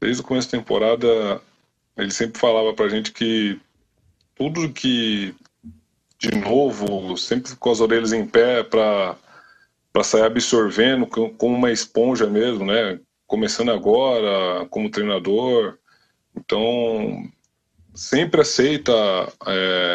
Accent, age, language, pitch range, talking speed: Brazilian, 20-39, Portuguese, 100-125 Hz, 115 wpm